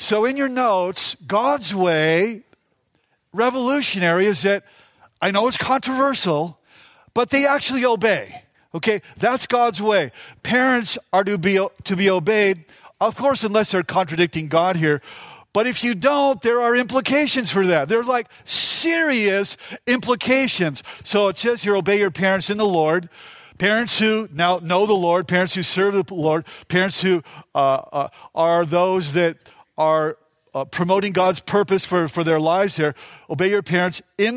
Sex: male